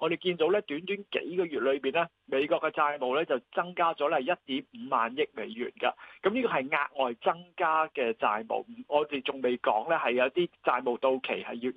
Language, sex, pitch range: Chinese, male, 140-195 Hz